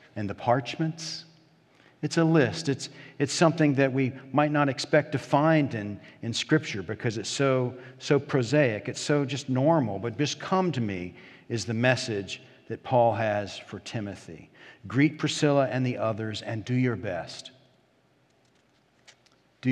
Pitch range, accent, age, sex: 110-145 Hz, American, 50-69, male